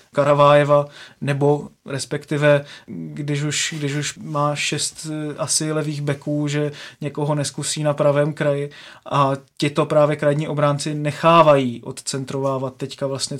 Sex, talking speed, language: male, 125 wpm, Czech